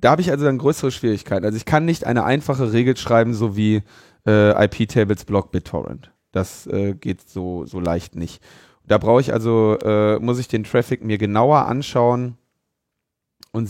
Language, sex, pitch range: German, male, 95-120 Hz